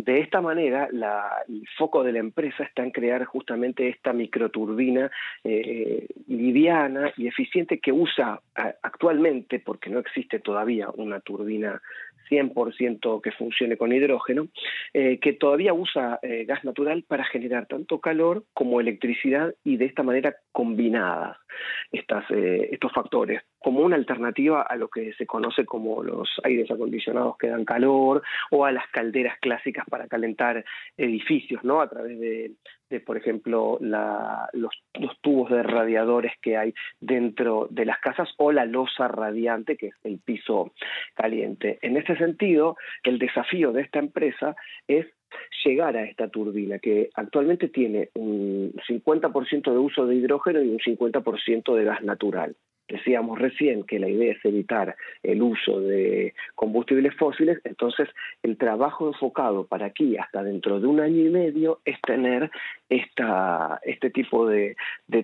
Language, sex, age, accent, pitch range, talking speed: Spanish, male, 40-59, Argentinian, 115-145 Hz, 150 wpm